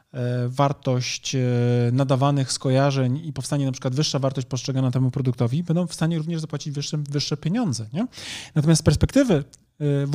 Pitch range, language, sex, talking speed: 140-180 Hz, Polish, male, 140 wpm